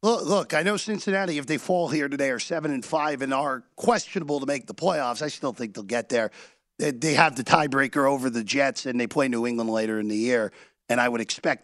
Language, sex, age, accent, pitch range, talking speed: English, male, 40-59, American, 140-210 Hz, 235 wpm